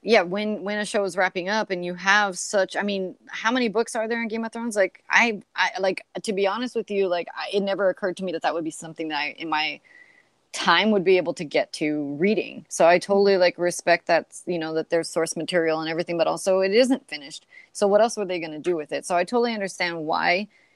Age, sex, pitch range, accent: 30-49, female, 170-210 Hz, American